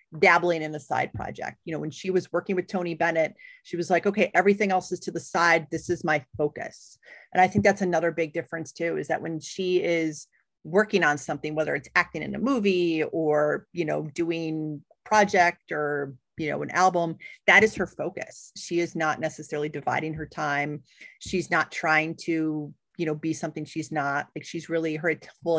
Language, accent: English, American